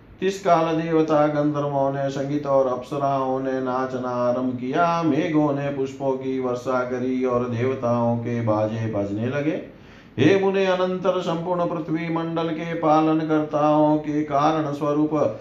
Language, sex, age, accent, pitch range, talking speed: Hindi, male, 40-59, native, 135-155 Hz, 130 wpm